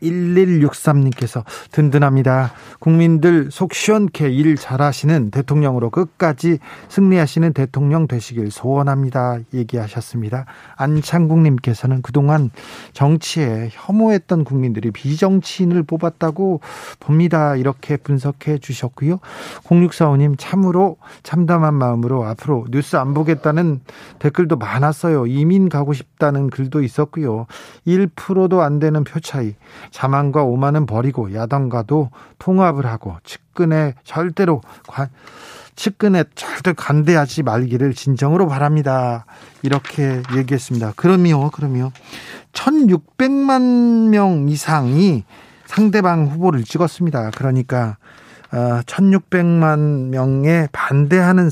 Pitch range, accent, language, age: 130-170 Hz, native, Korean, 40-59